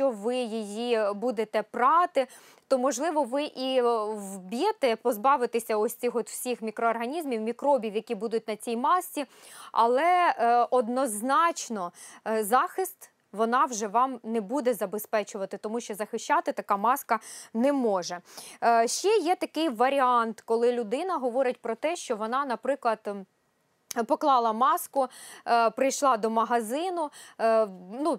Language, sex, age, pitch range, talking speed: Ukrainian, female, 20-39, 220-275 Hz, 125 wpm